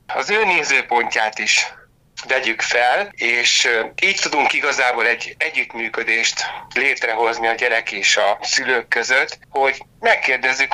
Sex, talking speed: male, 115 wpm